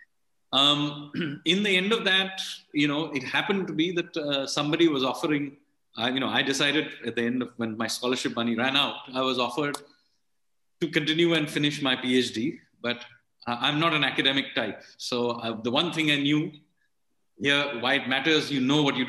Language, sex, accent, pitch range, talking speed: English, male, Indian, 120-150 Hz, 195 wpm